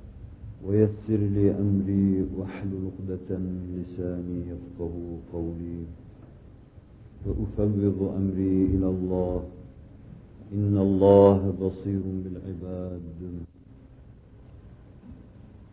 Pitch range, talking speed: 95-105 Hz, 65 wpm